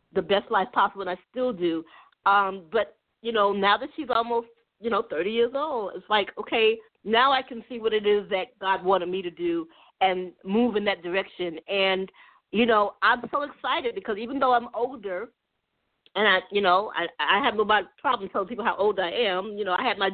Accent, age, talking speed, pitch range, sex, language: American, 40-59, 220 wpm, 190-250 Hz, female, English